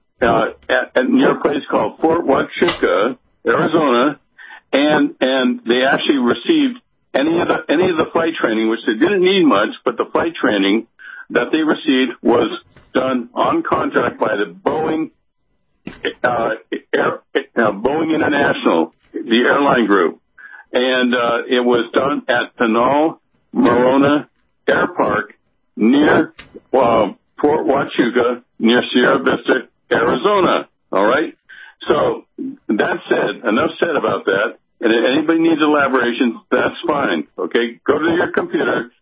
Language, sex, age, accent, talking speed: English, male, 60-79, American, 135 wpm